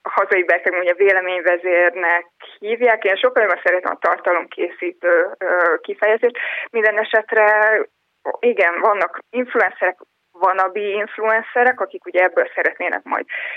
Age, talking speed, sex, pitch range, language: 20-39, 115 wpm, female, 185-250 Hz, Hungarian